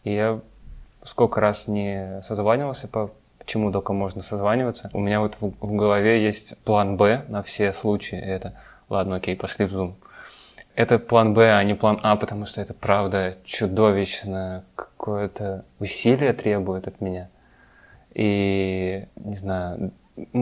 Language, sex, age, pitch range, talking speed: Russian, male, 20-39, 95-110 Hz, 140 wpm